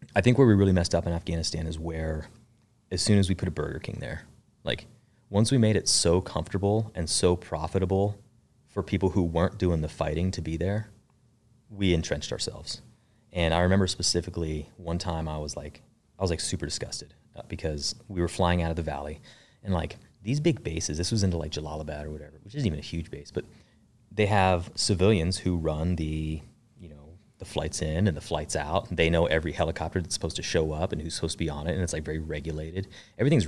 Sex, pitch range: male, 80-100 Hz